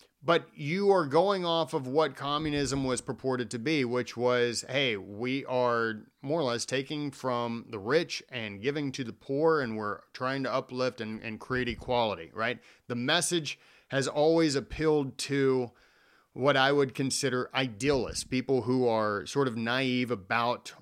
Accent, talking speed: American, 165 wpm